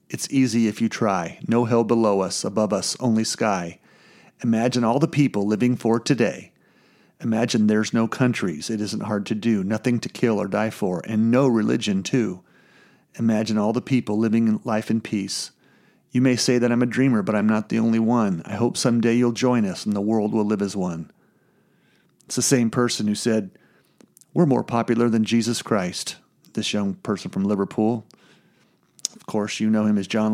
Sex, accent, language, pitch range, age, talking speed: male, American, English, 105-120 Hz, 40-59, 190 wpm